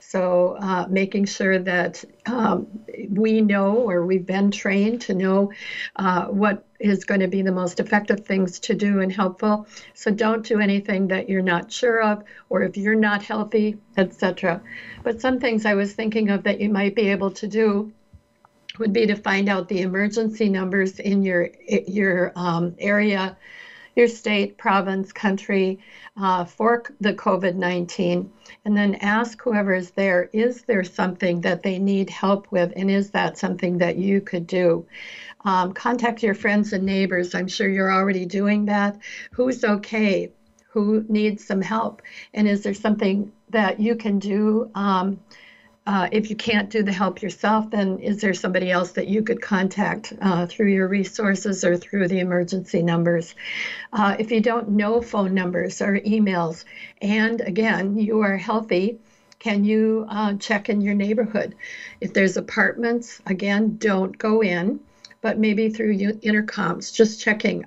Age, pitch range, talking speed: 60-79, 190-220 Hz, 165 wpm